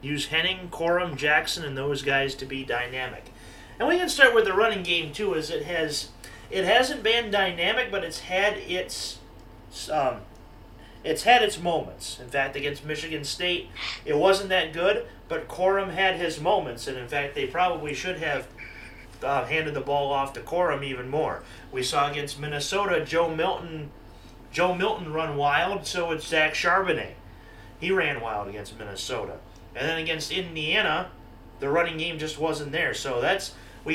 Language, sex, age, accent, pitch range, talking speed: English, male, 30-49, American, 135-185 Hz, 170 wpm